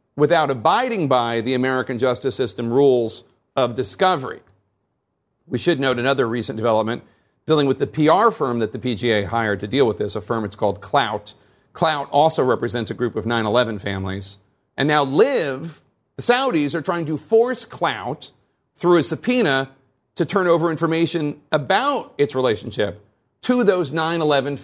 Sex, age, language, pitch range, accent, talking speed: male, 40-59, English, 115-150 Hz, American, 160 wpm